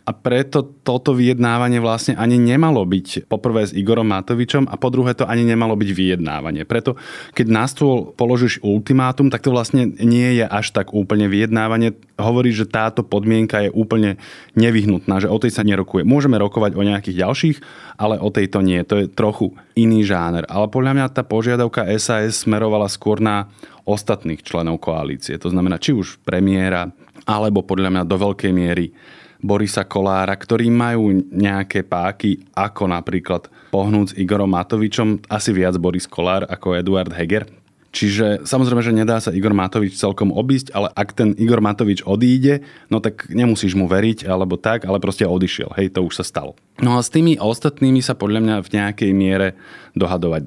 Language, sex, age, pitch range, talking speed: Slovak, male, 20-39, 95-120 Hz, 170 wpm